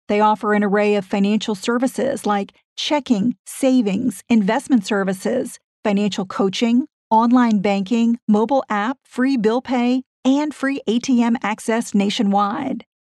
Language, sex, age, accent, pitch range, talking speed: English, female, 50-69, American, 190-245 Hz, 120 wpm